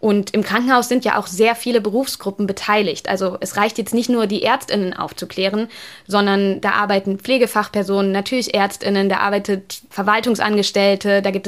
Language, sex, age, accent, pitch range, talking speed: German, female, 20-39, German, 195-225 Hz, 155 wpm